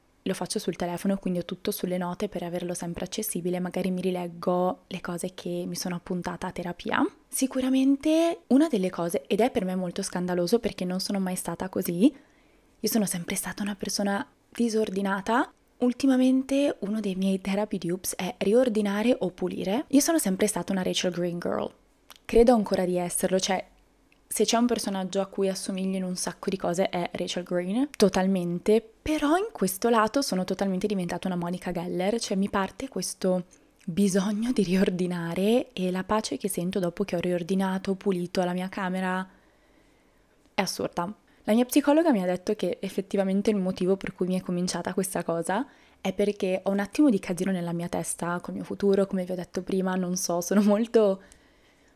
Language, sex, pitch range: Italian, female, 180-215 Hz